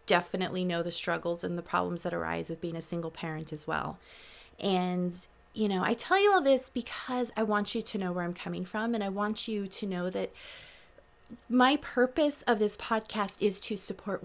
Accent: American